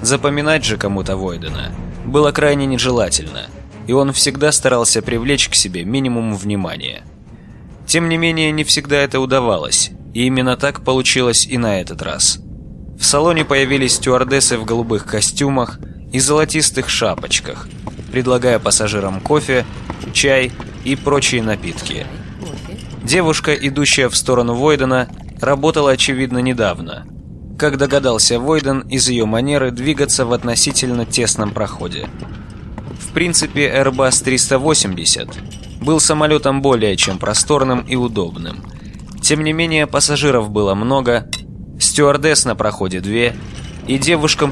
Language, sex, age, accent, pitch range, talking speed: Russian, male, 20-39, native, 110-140 Hz, 120 wpm